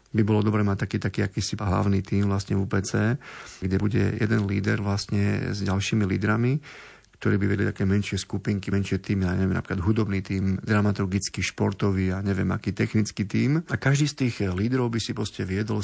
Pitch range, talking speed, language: 100-115 Hz, 185 wpm, Slovak